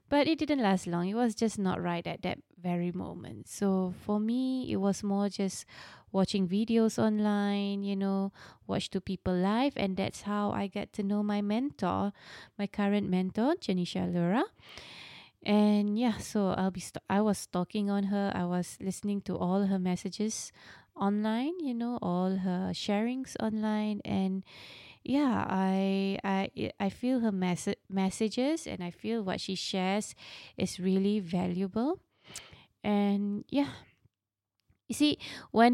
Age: 20-39